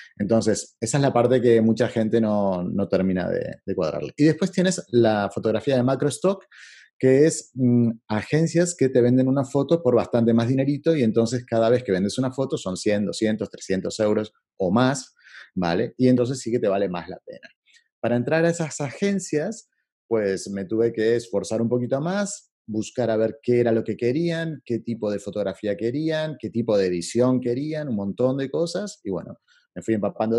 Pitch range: 100-135 Hz